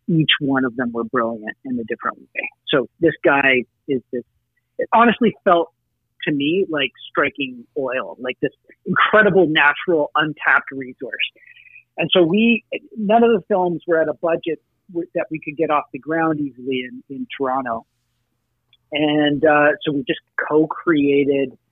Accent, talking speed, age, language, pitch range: American, 155 wpm, 40-59, English, 125-165 Hz